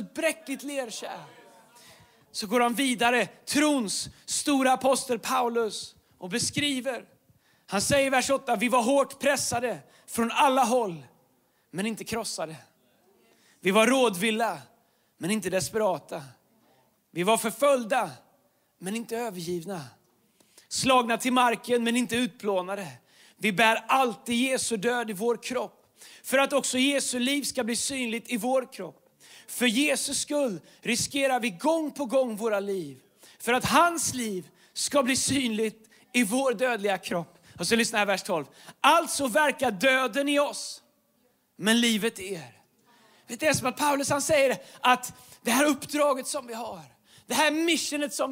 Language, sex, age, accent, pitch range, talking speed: Swedish, male, 30-49, native, 220-275 Hz, 150 wpm